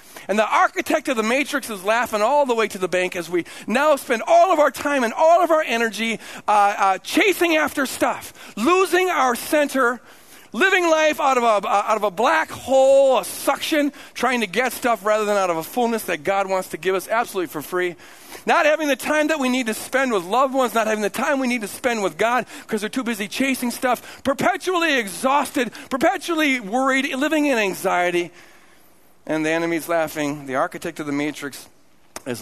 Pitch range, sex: 160-265 Hz, male